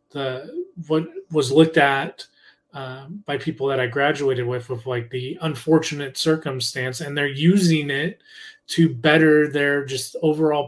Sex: male